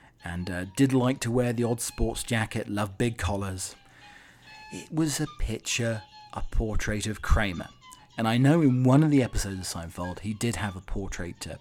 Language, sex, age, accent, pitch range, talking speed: English, male, 40-59, British, 95-120 Hz, 190 wpm